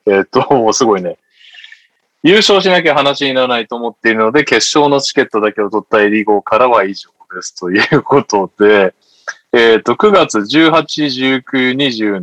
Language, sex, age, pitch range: Japanese, male, 20-39, 110-155 Hz